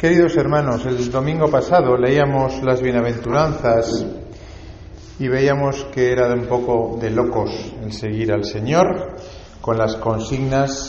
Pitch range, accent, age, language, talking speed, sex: 100-130 Hz, Spanish, 40-59, Spanish, 130 wpm, male